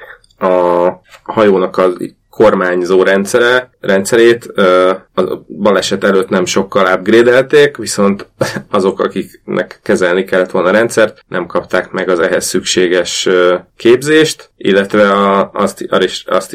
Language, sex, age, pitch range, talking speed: Hungarian, male, 30-49, 90-105 Hz, 105 wpm